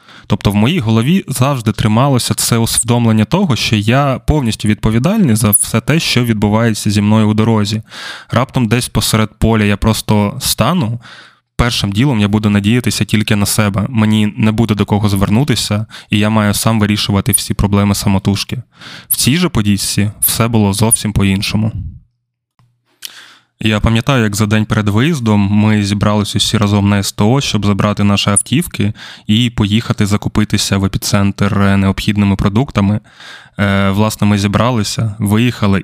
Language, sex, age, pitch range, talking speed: Ukrainian, male, 20-39, 100-115 Hz, 145 wpm